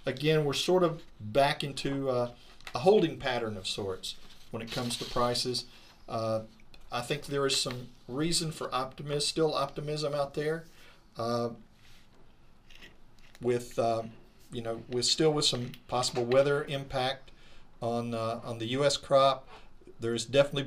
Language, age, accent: English, 50-69, American